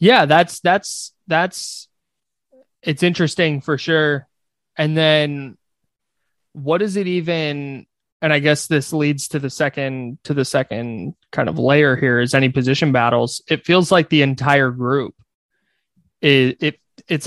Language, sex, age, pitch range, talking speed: English, male, 20-39, 130-155 Hz, 140 wpm